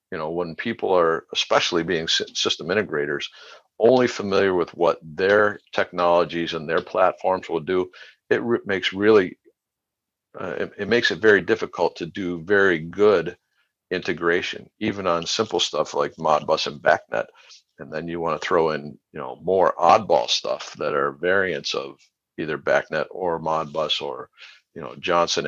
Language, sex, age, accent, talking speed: English, male, 50-69, American, 160 wpm